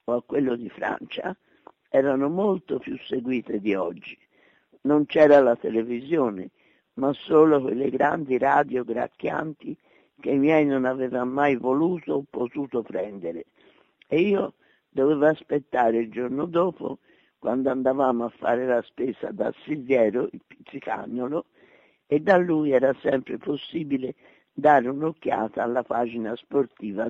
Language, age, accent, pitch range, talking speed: Italian, 60-79, native, 120-150 Hz, 130 wpm